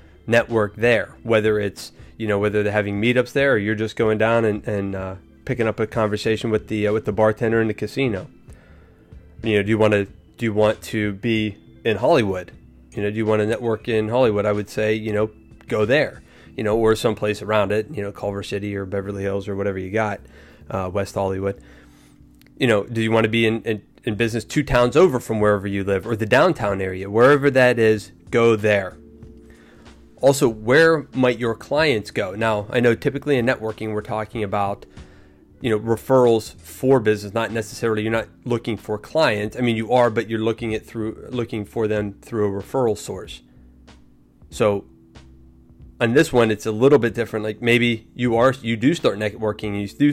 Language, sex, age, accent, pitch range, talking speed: English, male, 20-39, American, 100-115 Hz, 205 wpm